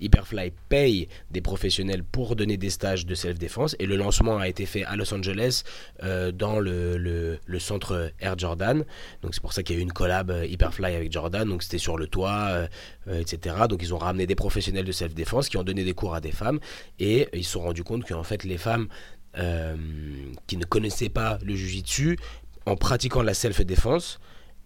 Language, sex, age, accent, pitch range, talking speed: French, male, 20-39, French, 90-110 Hz, 205 wpm